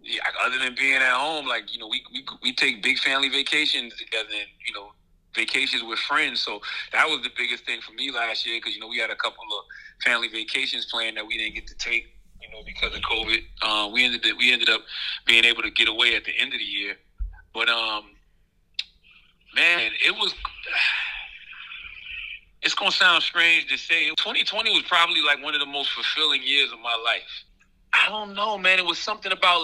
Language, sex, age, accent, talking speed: English, male, 30-49, American, 215 wpm